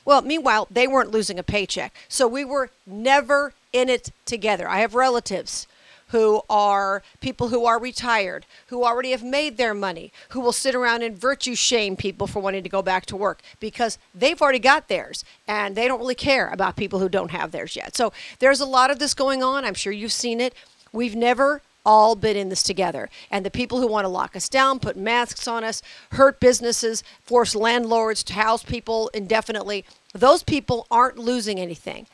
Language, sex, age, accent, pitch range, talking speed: English, female, 50-69, American, 205-255 Hz, 200 wpm